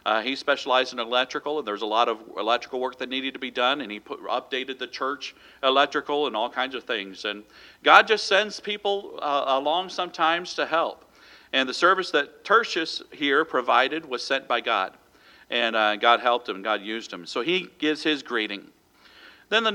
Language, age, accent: English, 50-69, American